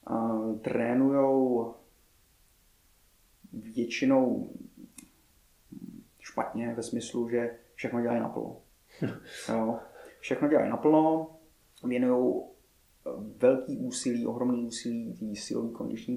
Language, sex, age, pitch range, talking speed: Czech, male, 30-49, 110-130 Hz, 80 wpm